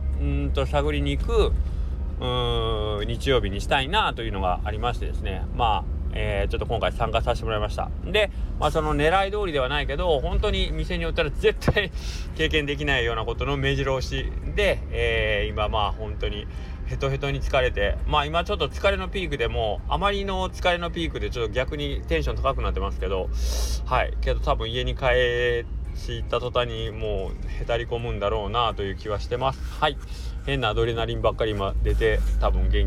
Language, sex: Japanese, male